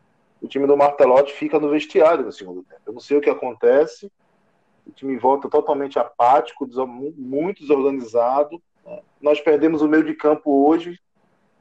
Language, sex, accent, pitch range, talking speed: Portuguese, male, Brazilian, 130-200 Hz, 155 wpm